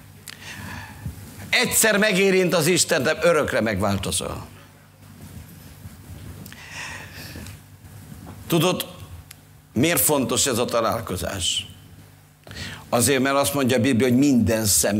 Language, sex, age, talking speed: Hungarian, male, 50-69, 90 wpm